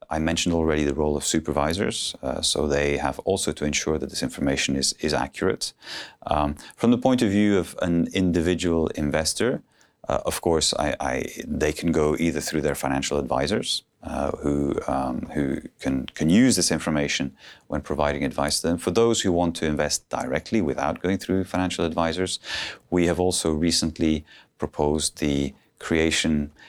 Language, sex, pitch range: English, male, 75-90 Hz